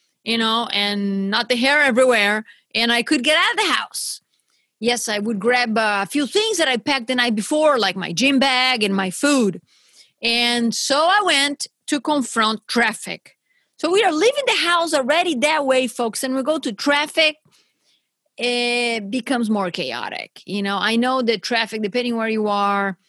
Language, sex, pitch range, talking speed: English, female, 195-260 Hz, 185 wpm